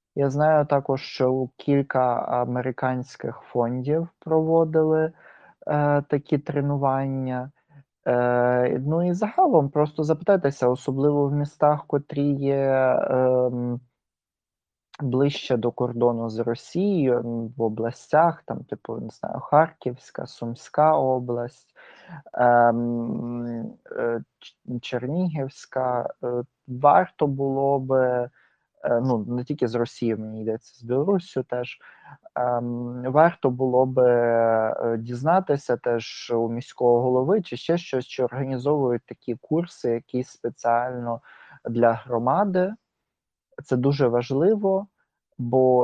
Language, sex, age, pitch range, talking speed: Ukrainian, male, 20-39, 120-145 Hz, 105 wpm